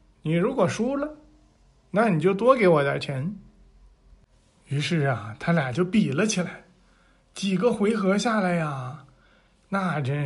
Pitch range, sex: 140-195 Hz, male